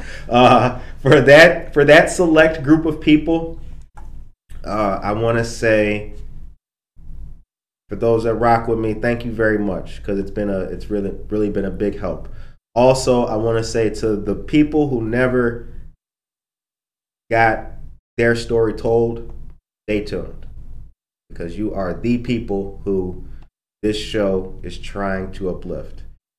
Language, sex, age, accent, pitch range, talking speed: English, male, 30-49, American, 95-120 Hz, 145 wpm